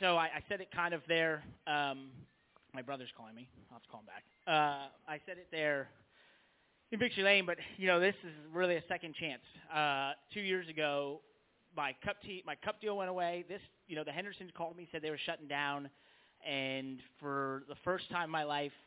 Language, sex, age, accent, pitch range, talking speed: English, male, 30-49, American, 140-170 Hz, 215 wpm